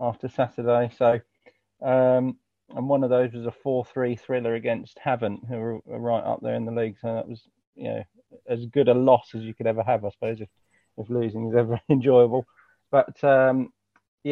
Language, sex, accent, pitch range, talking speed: English, male, British, 115-130 Hz, 195 wpm